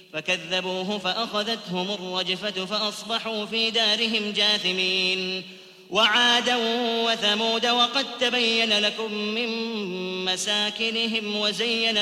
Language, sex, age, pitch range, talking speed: Arabic, male, 30-49, 185-220 Hz, 75 wpm